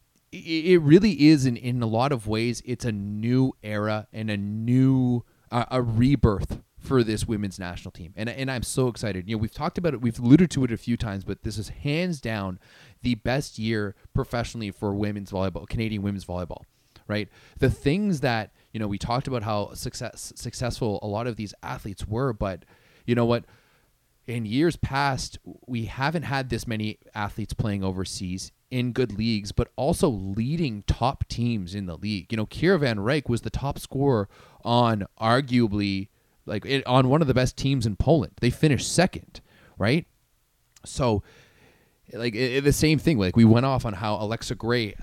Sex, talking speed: male, 190 wpm